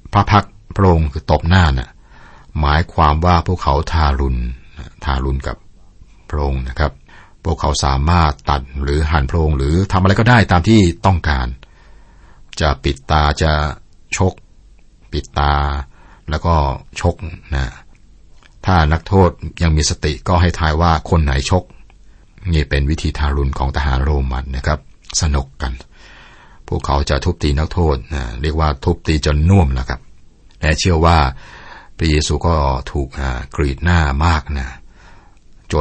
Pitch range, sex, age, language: 70-85 Hz, male, 60-79, Thai